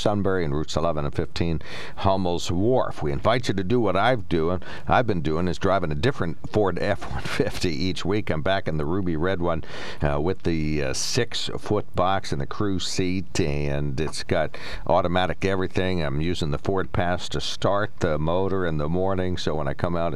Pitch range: 75-95 Hz